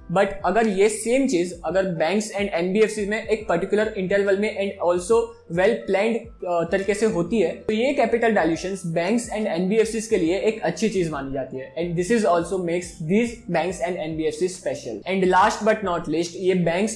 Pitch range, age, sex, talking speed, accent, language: 180-215 Hz, 20-39, male, 190 wpm, native, Hindi